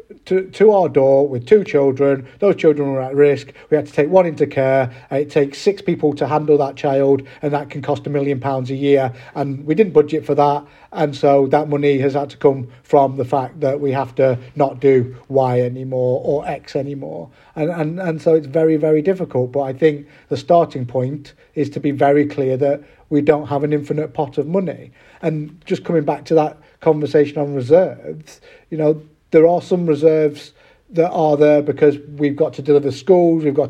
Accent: British